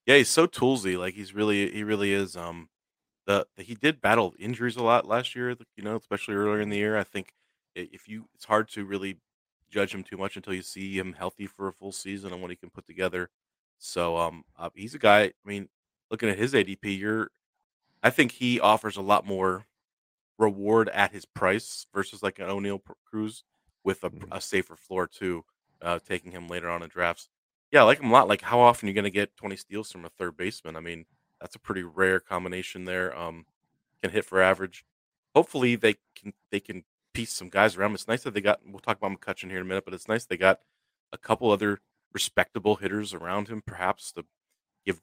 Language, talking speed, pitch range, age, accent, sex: English, 220 wpm, 90-105 Hz, 30-49, American, male